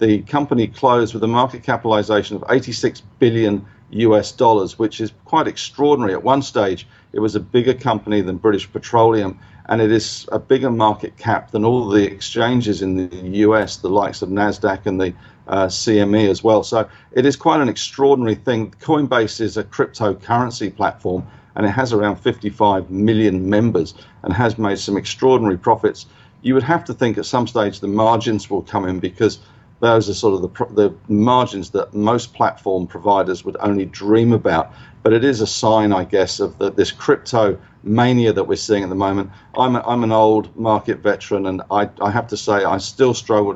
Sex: male